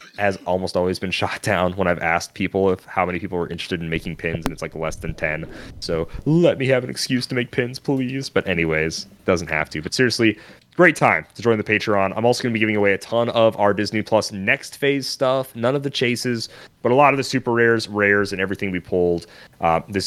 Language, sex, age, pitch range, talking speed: English, male, 30-49, 80-110 Hz, 245 wpm